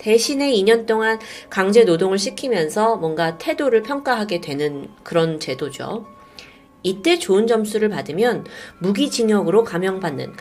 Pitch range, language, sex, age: 175-260 Hz, Korean, female, 30-49